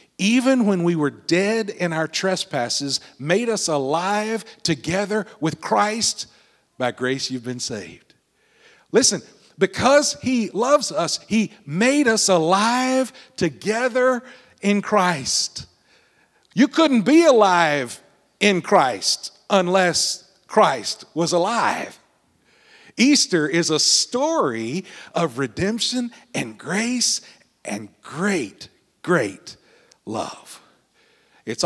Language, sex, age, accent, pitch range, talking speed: English, male, 50-69, American, 155-220 Hz, 100 wpm